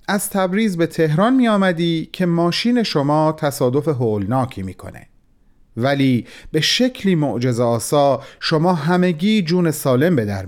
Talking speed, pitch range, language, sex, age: 130 wpm, 120-175 Hz, Persian, male, 40-59